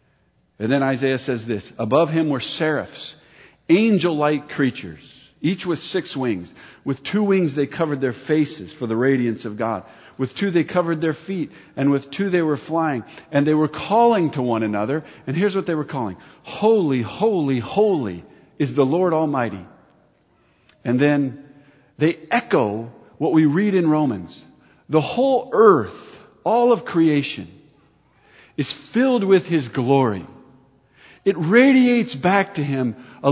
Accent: American